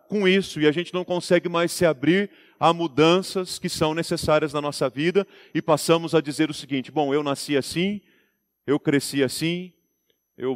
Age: 40-59